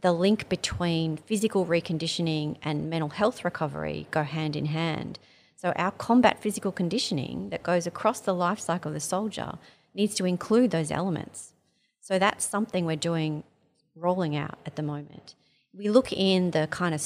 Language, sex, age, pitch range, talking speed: English, female, 30-49, 155-200 Hz, 170 wpm